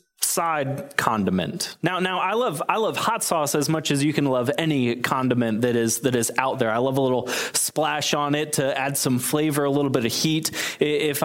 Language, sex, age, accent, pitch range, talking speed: English, male, 20-39, American, 130-175 Hz, 220 wpm